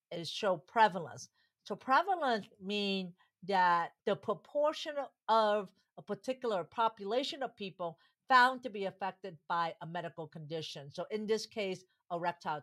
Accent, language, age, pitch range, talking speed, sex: American, English, 50-69, 170-250 Hz, 135 wpm, female